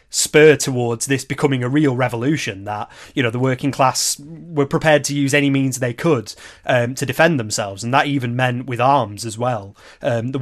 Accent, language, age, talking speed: British, English, 30-49, 200 wpm